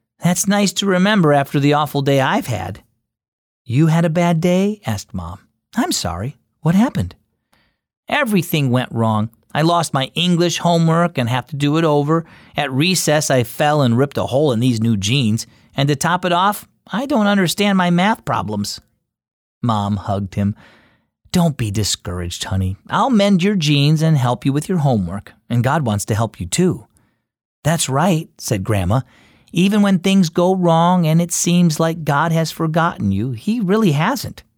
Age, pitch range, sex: 40-59, 115-175 Hz, male